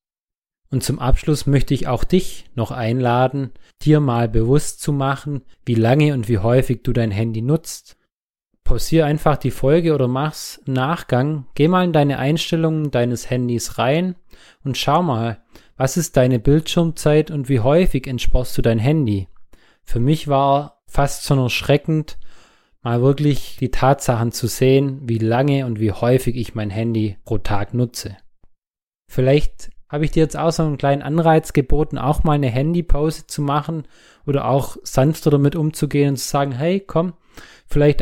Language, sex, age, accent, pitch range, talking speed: German, male, 20-39, German, 120-150 Hz, 165 wpm